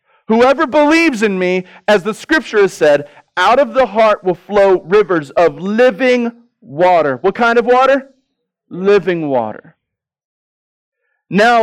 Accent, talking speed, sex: American, 135 wpm, male